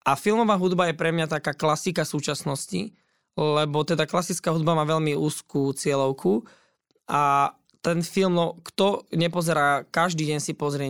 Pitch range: 145-175 Hz